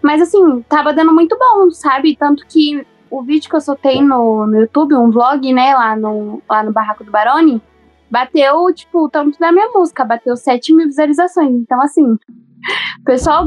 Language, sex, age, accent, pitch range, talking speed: Portuguese, female, 10-29, Brazilian, 235-295 Hz, 185 wpm